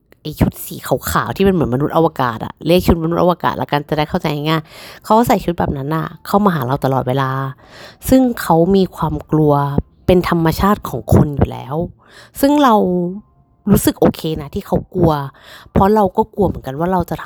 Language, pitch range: Thai, 145-195 Hz